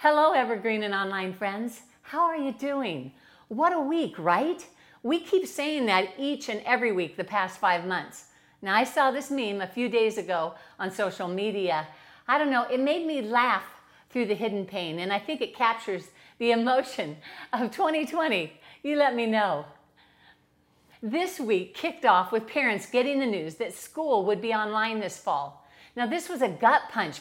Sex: female